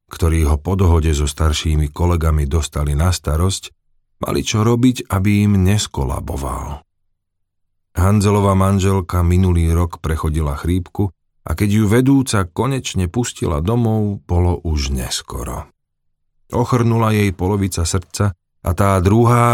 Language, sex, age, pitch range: Slovak, male, 40-59, 80-105 Hz